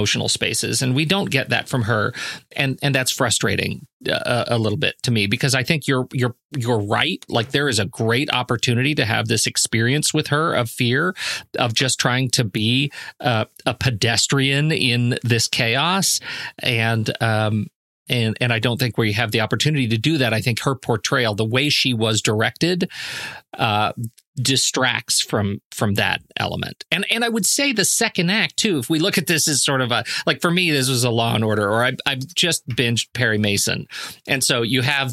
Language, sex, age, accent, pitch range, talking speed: English, male, 40-59, American, 115-140 Hz, 200 wpm